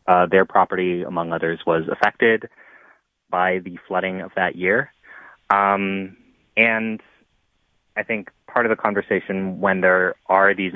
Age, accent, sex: 30-49, American, male